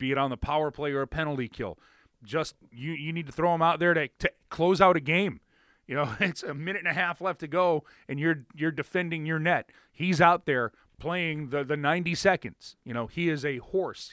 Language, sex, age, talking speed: English, male, 30-49, 240 wpm